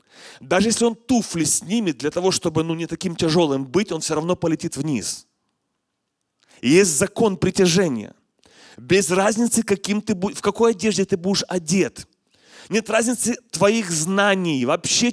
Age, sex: 30-49, male